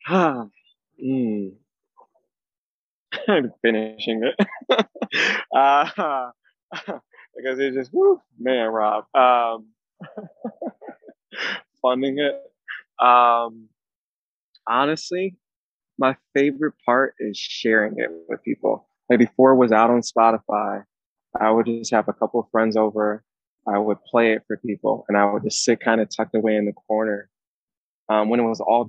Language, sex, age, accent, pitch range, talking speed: English, male, 20-39, American, 105-130 Hz, 135 wpm